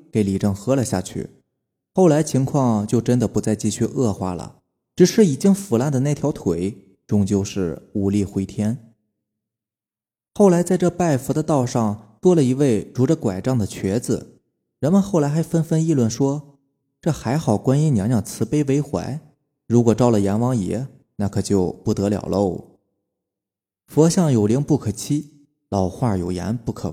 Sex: male